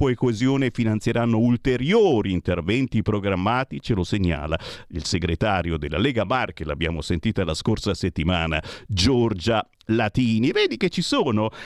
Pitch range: 110-165 Hz